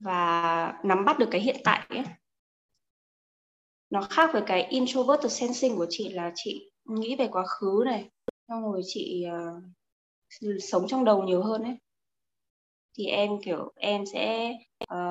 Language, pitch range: Vietnamese, 185-245 Hz